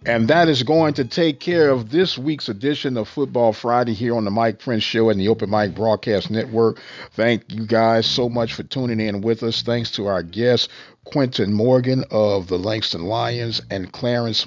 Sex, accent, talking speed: male, American, 200 wpm